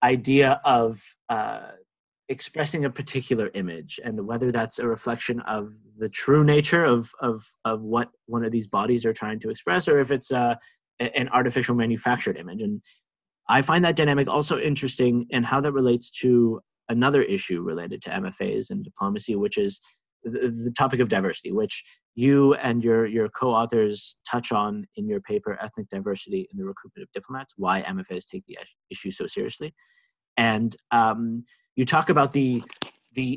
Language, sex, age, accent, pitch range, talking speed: English, male, 30-49, American, 115-145 Hz, 170 wpm